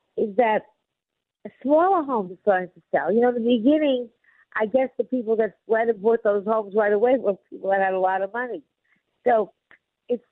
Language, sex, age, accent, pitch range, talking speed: English, female, 50-69, American, 210-275 Hz, 210 wpm